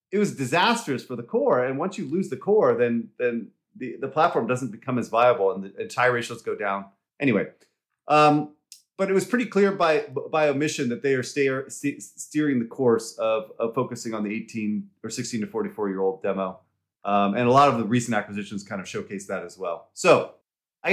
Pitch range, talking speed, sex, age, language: 115-150 Hz, 205 wpm, male, 30-49, English